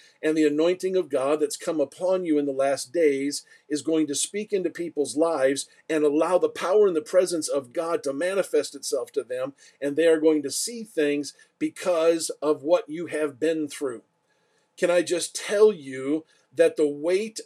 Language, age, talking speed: English, 50-69, 195 wpm